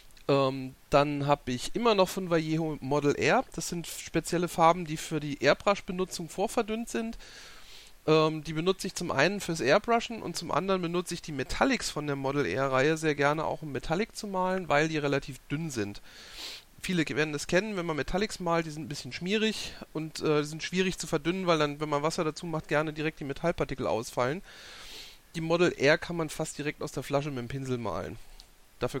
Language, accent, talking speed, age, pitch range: German, German, 195 wpm, 40-59, 145-180 Hz